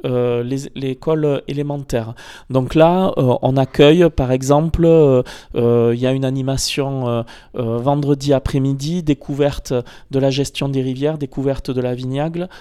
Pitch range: 125-150 Hz